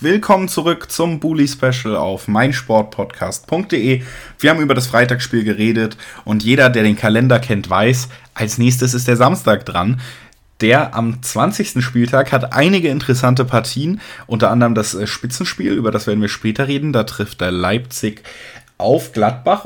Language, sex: German, male